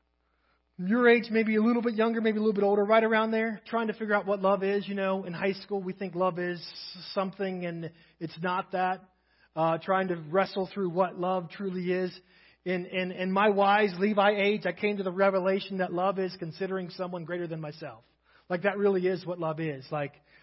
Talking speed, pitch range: 215 wpm, 175-205 Hz